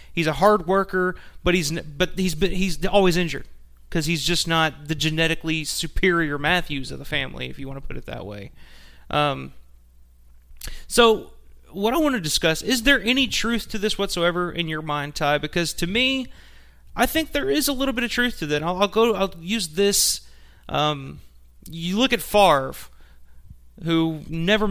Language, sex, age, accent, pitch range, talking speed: English, male, 30-49, American, 140-185 Hz, 185 wpm